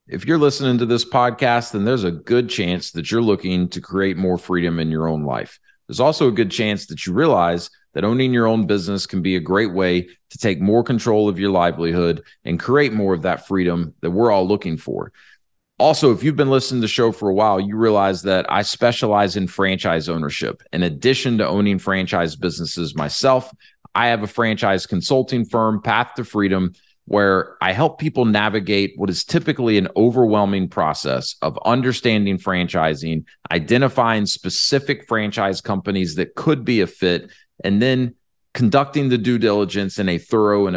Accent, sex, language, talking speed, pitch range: American, male, English, 185 wpm, 90-120 Hz